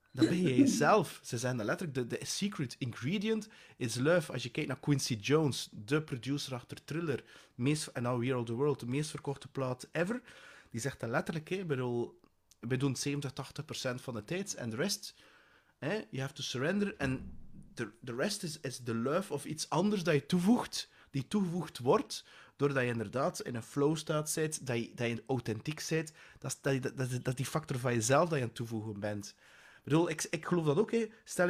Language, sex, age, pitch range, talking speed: English, male, 30-49, 125-165 Hz, 205 wpm